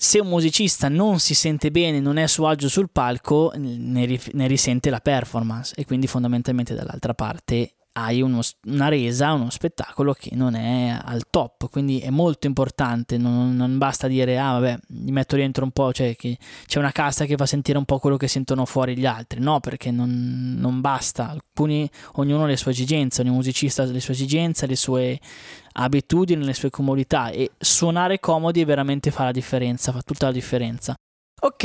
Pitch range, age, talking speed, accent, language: 130-155 Hz, 20-39, 190 wpm, native, Italian